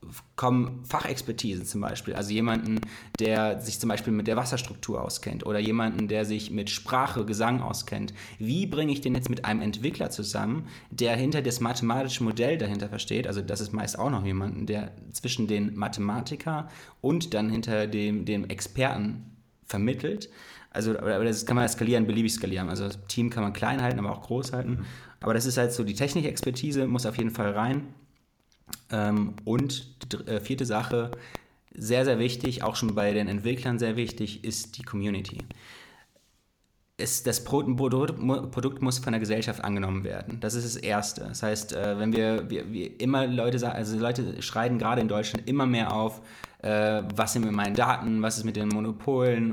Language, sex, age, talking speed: German, male, 30-49, 170 wpm